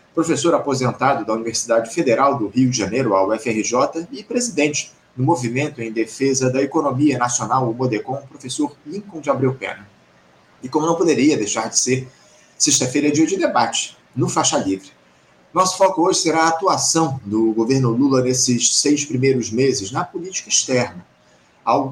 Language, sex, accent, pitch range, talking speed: Portuguese, male, Brazilian, 120-150 Hz, 160 wpm